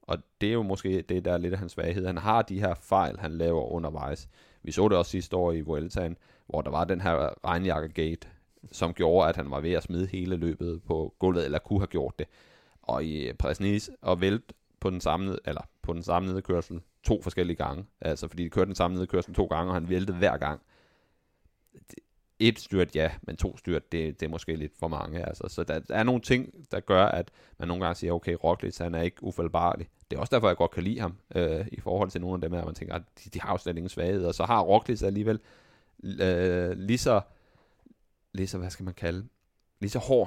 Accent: native